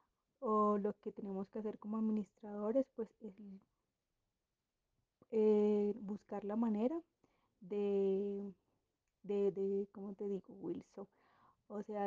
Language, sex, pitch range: Spanish, female, 195-225 Hz